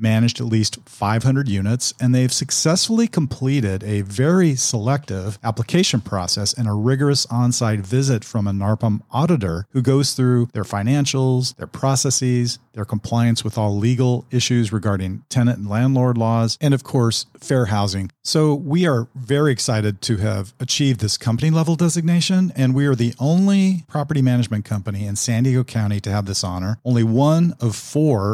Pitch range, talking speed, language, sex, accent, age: 105-135 Hz, 165 wpm, English, male, American, 40-59